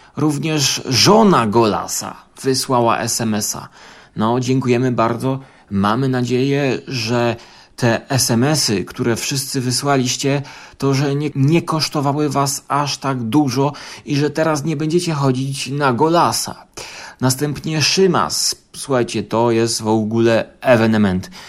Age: 30-49